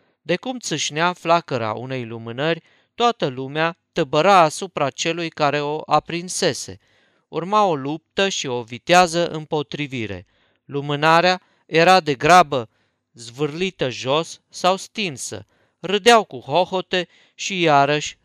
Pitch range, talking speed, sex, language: 130-170 Hz, 110 wpm, male, Romanian